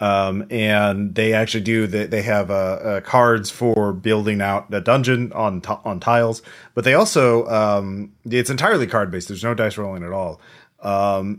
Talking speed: 170 wpm